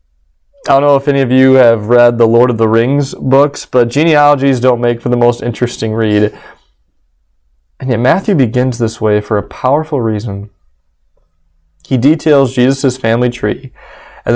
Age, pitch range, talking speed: 20-39, 100-145 Hz, 165 wpm